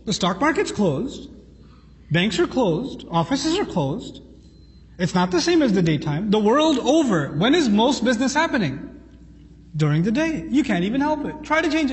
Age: 30-49